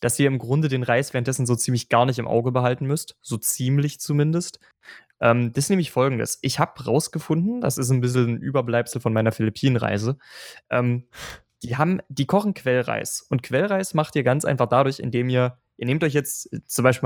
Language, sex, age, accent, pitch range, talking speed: German, male, 20-39, German, 125-155 Hz, 195 wpm